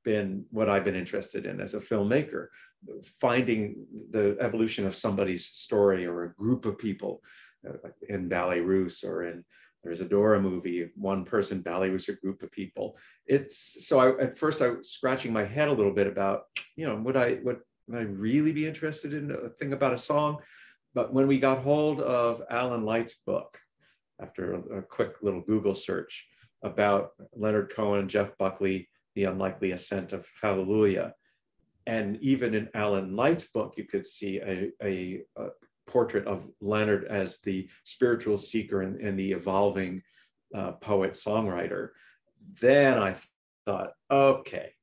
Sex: male